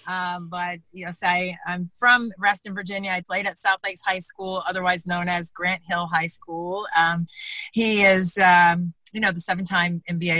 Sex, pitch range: female, 175-200 Hz